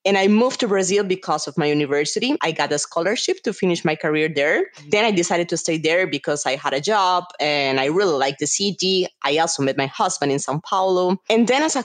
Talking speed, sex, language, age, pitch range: 240 wpm, female, English, 20-39, 155-205 Hz